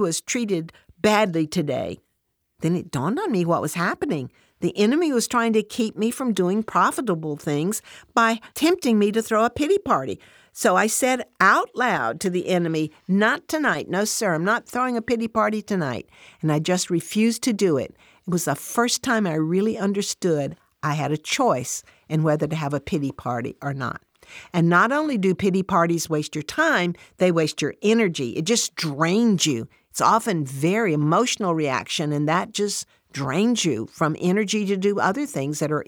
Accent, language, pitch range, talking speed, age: American, English, 160-225 Hz, 190 wpm, 60-79